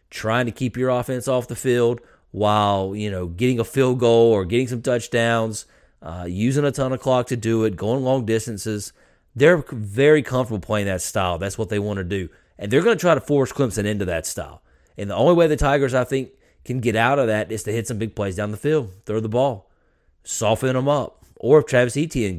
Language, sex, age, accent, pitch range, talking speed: English, male, 30-49, American, 100-130 Hz, 230 wpm